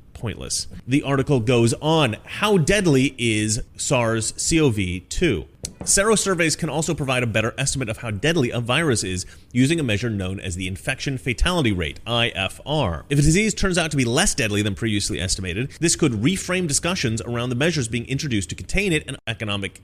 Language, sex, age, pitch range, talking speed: English, male, 30-49, 105-160 Hz, 175 wpm